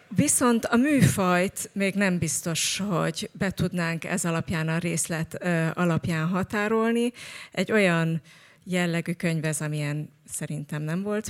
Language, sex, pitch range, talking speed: Hungarian, female, 165-195 Hz, 120 wpm